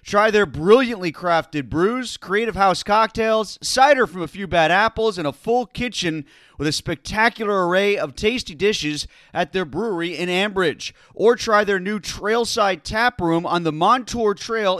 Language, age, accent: English, 30-49, American